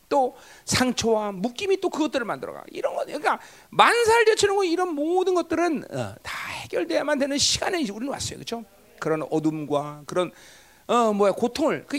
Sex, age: male, 40-59